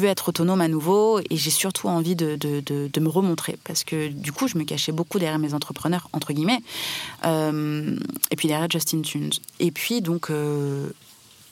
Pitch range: 155-195 Hz